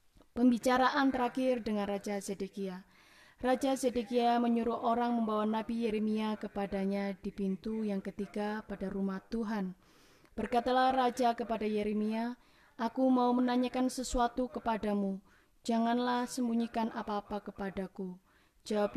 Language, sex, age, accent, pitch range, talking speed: Indonesian, female, 20-39, native, 200-235 Hz, 110 wpm